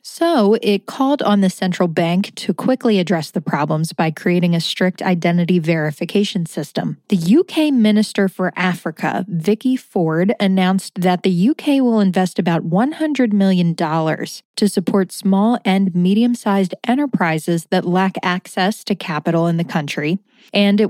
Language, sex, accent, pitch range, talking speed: English, female, American, 175-220 Hz, 145 wpm